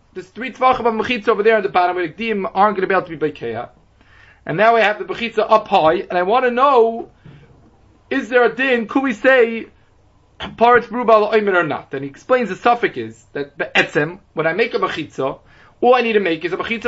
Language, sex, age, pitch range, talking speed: English, male, 20-39, 205-245 Hz, 240 wpm